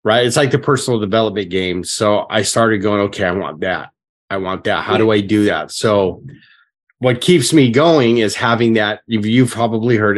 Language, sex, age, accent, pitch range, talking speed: English, male, 30-49, American, 100-120 Hz, 200 wpm